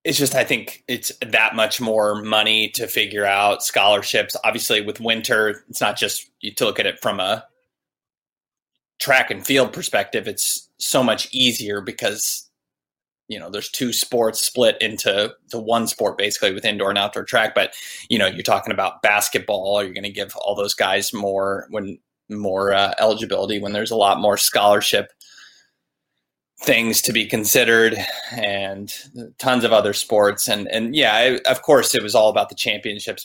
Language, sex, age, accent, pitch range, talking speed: English, male, 20-39, American, 105-115 Hz, 175 wpm